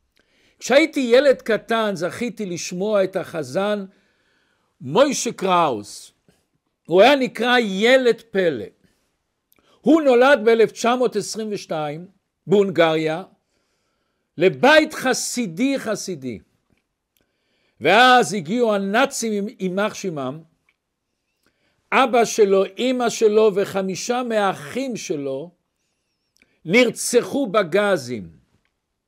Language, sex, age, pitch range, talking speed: Hebrew, male, 60-79, 185-245 Hz, 70 wpm